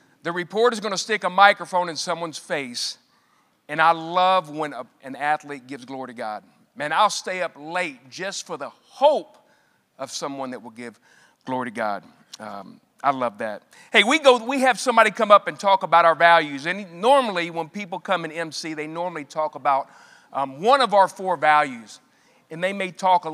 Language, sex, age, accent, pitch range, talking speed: English, male, 40-59, American, 150-215 Hz, 200 wpm